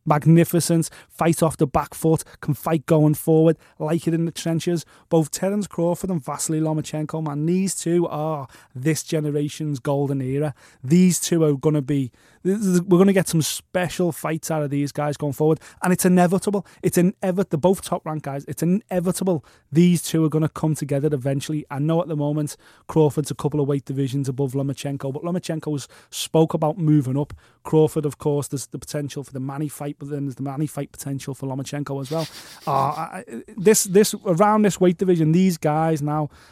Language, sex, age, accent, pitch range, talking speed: English, male, 20-39, British, 145-170 Hz, 195 wpm